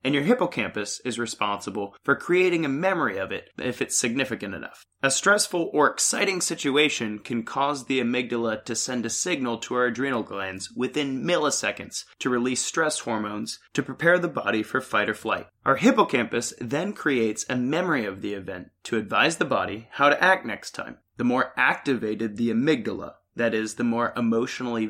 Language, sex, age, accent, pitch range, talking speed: English, male, 20-39, American, 110-140 Hz, 180 wpm